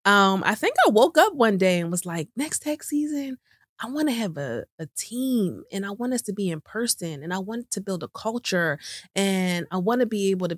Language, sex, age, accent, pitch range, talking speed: English, female, 20-39, American, 170-205 Hz, 245 wpm